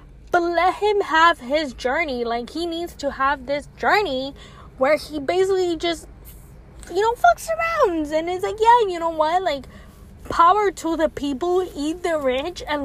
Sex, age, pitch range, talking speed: female, 10-29, 265-355 Hz, 175 wpm